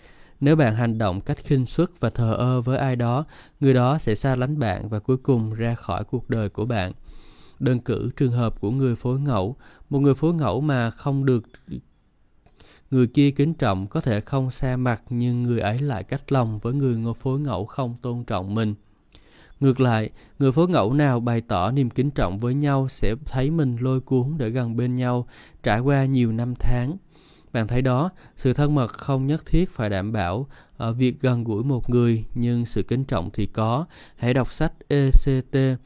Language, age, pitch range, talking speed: Vietnamese, 20-39, 115-140 Hz, 205 wpm